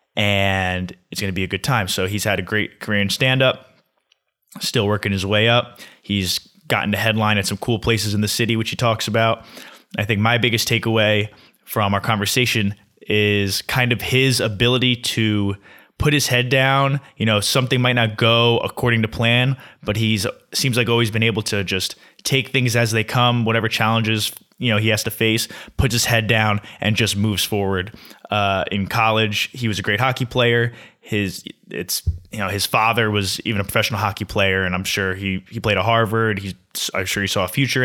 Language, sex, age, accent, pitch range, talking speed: English, male, 20-39, American, 100-115 Hz, 205 wpm